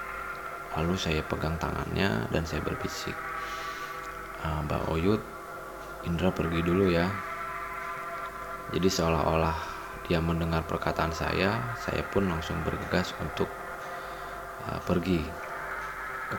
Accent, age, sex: native, 20-39, male